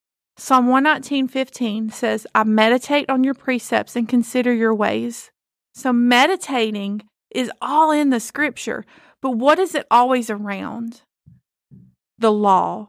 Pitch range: 220-260 Hz